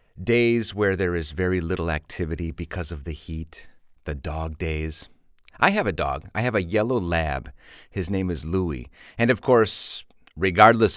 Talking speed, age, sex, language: 170 wpm, 40-59, male, English